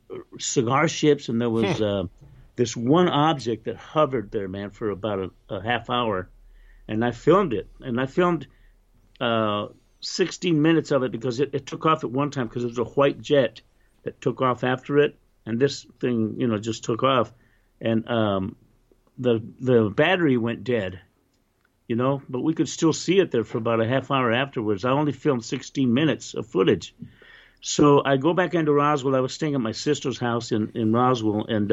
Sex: male